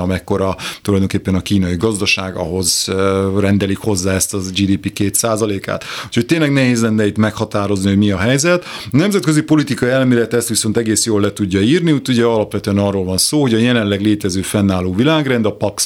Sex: male